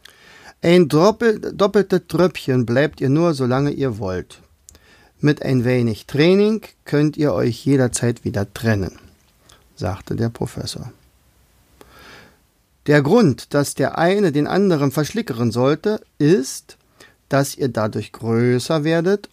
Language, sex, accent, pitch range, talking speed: German, male, German, 115-170 Hz, 120 wpm